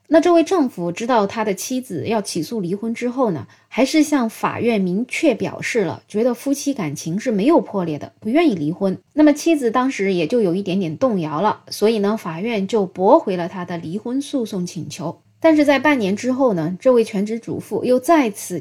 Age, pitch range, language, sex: 20-39, 190-280 Hz, Chinese, female